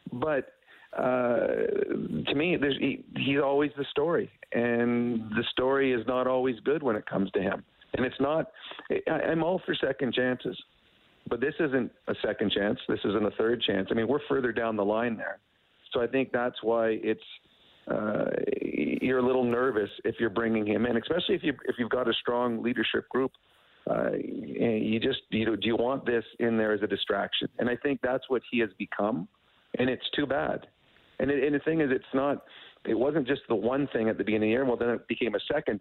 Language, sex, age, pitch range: English, male, 50-69, 110-130 Hz